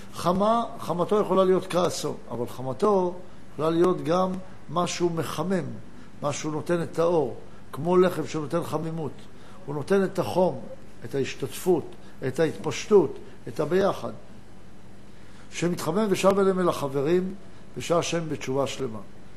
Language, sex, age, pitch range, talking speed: Hebrew, male, 60-79, 135-180 Hz, 120 wpm